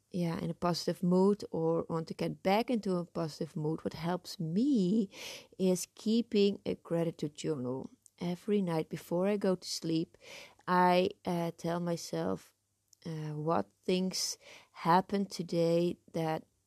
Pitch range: 165-200 Hz